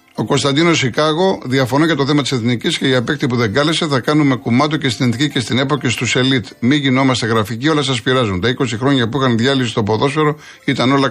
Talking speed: 230 wpm